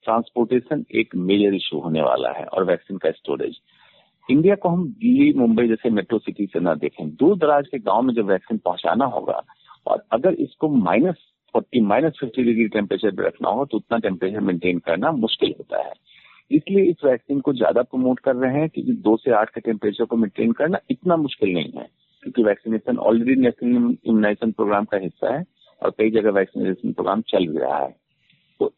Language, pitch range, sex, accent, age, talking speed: Hindi, 115-185 Hz, male, native, 50-69, 190 wpm